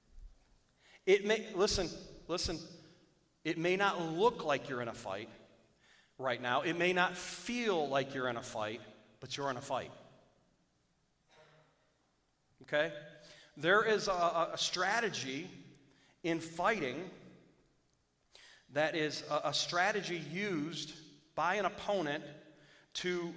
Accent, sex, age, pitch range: American, male, 40-59, 145-175 Hz